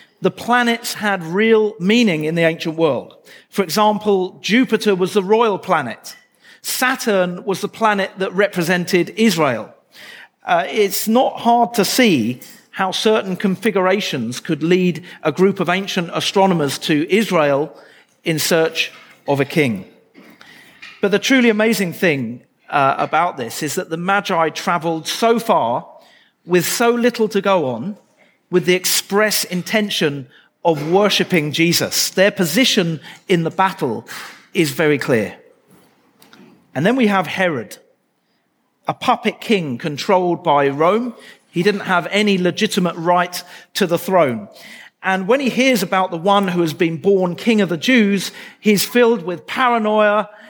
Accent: British